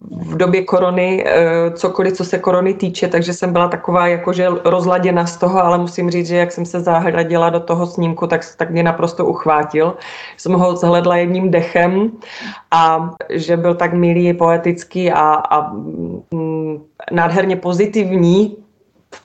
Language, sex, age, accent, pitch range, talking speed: Czech, female, 30-49, native, 160-180 Hz, 155 wpm